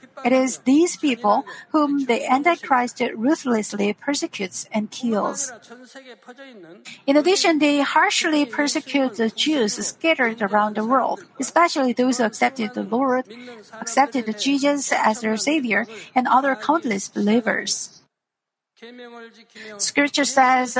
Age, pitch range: 50-69, 230-285 Hz